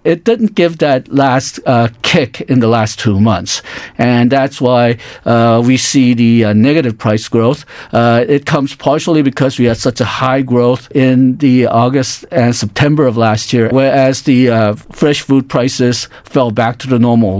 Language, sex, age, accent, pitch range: Korean, male, 50-69, American, 115-140 Hz